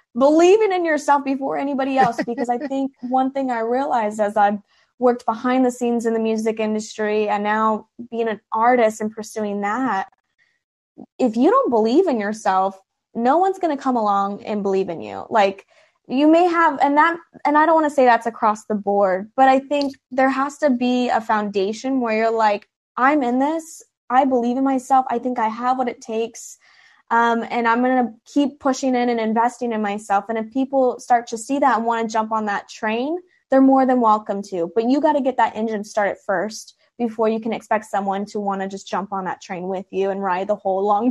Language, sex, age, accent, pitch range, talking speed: English, female, 10-29, American, 215-270 Hz, 220 wpm